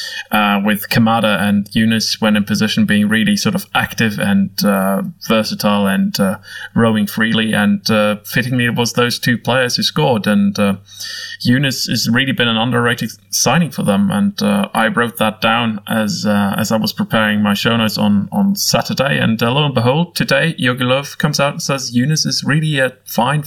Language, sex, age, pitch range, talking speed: English, male, 20-39, 110-155 Hz, 195 wpm